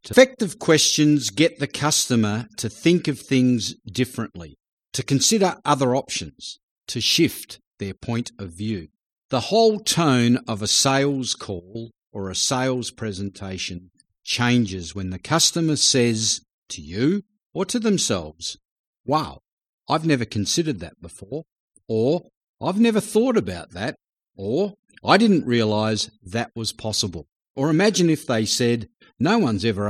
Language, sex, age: English, male, 50-69